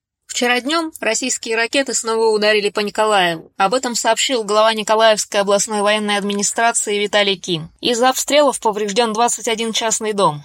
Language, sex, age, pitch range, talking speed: Russian, female, 20-39, 185-230 Hz, 140 wpm